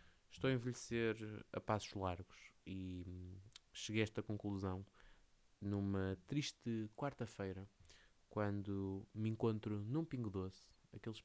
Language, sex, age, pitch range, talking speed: Portuguese, male, 20-39, 95-125 Hz, 110 wpm